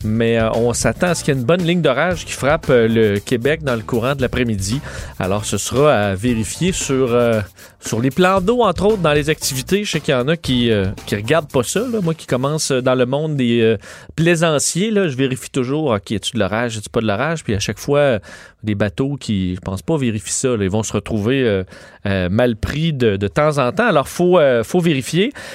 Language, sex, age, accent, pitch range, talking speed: French, male, 30-49, Canadian, 115-170 Hz, 240 wpm